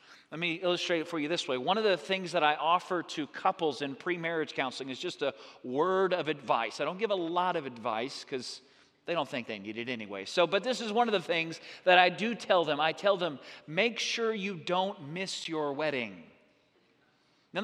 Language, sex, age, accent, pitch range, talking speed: English, male, 40-59, American, 165-225 Hz, 220 wpm